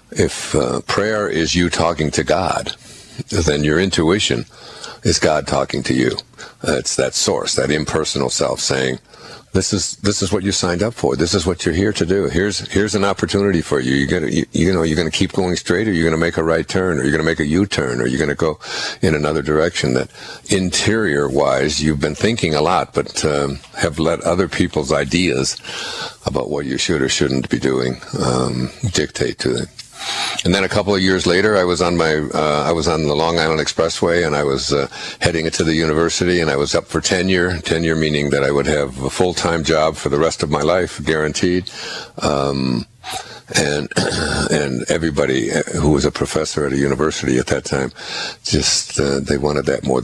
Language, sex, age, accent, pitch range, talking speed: English, male, 60-79, American, 70-90 Hz, 210 wpm